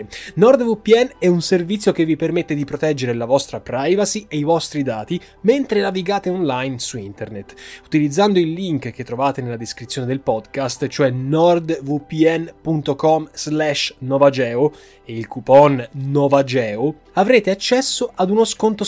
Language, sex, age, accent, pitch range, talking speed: Italian, male, 20-39, native, 130-175 Hz, 135 wpm